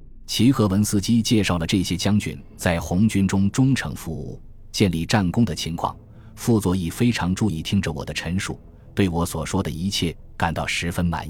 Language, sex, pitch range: Chinese, male, 85-115 Hz